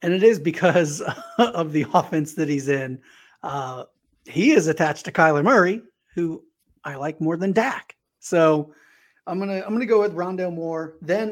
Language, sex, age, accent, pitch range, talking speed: English, male, 30-49, American, 150-185 Hz, 175 wpm